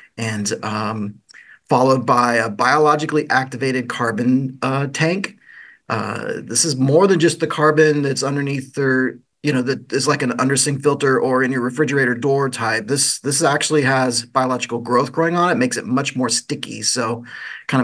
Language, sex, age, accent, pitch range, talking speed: English, male, 30-49, American, 120-145 Hz, 170 wpm